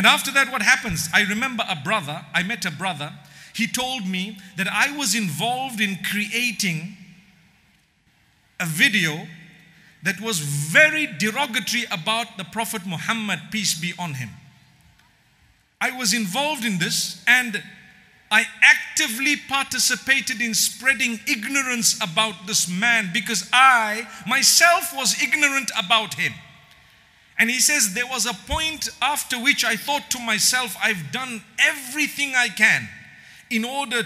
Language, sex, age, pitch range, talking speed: English, male, 50-69, 180-245 Hz, 135 wpm